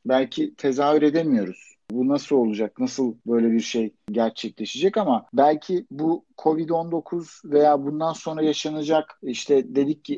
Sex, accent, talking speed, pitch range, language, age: male, native, 130 wpm, 135-175 Hz, Turkish, 50-69